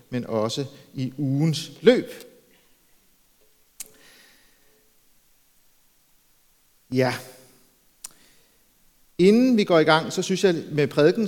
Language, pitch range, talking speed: Danish, 130-180 Hz, 85 wpm